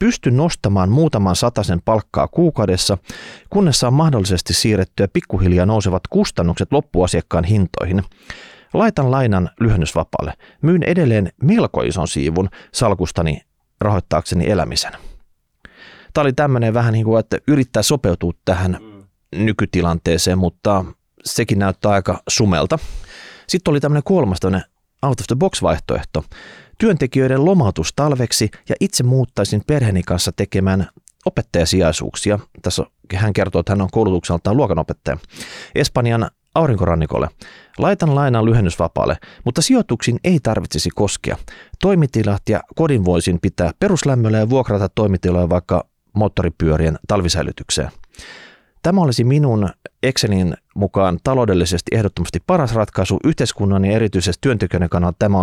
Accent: native